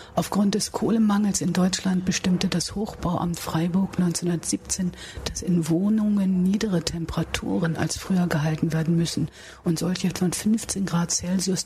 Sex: female